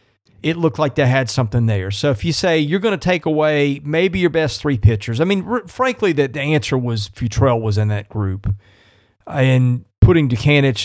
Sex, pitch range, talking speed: male, 105-145 Hz, 205 wpm